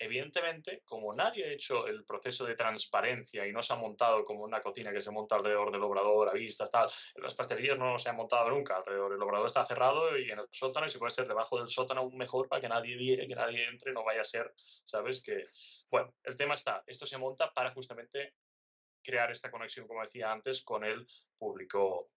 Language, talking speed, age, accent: Spanish, 220 wpm, 20-39, Spanish